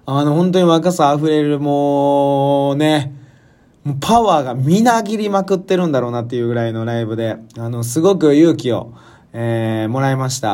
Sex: male